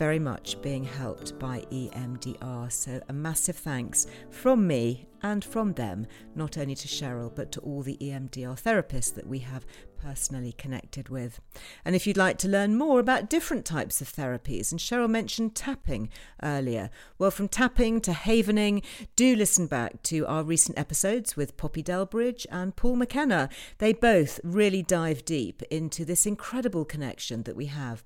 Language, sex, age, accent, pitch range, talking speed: English, female, 40-59, British, 135-210 Hz, 165 wpm